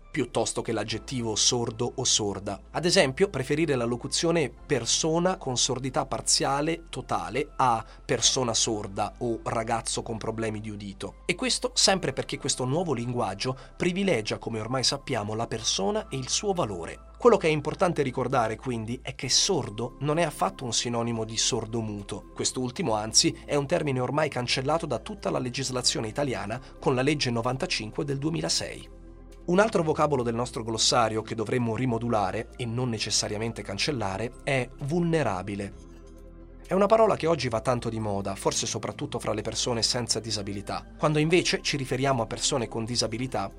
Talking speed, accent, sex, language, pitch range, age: 160 wpm, native, male, Italian, 110-145 Hz, 30-49